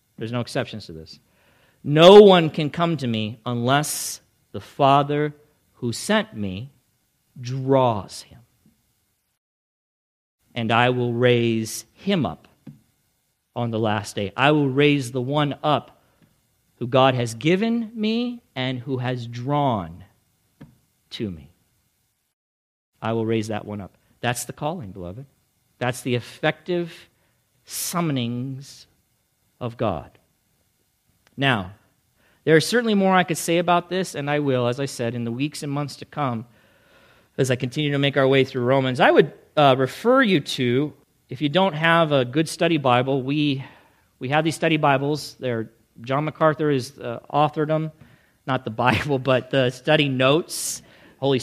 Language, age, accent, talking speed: English, 50-69, American, 150 wpm